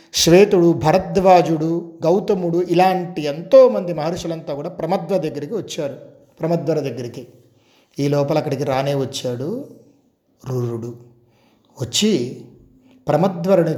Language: Telugu